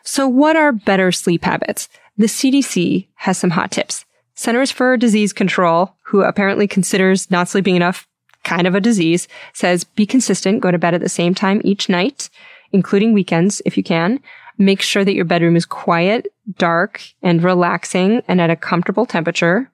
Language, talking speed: English, 175 wpm